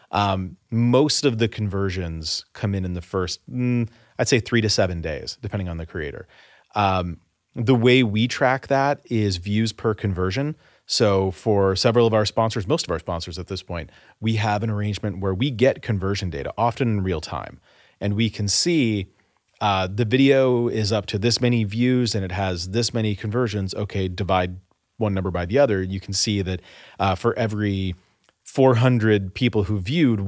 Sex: male